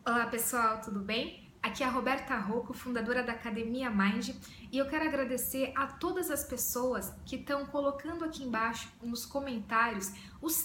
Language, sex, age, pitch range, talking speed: Portuguese, female, 10-29, 225-290 Hz, 165 wpm